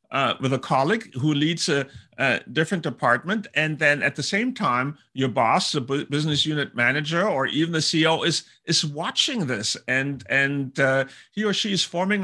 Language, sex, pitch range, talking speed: English, male, 135-175 Hz, 185 wpm